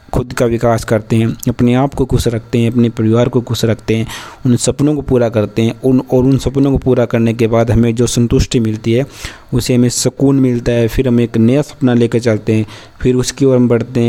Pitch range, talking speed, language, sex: 115-130 Hz, 125 wpm, Marathi, male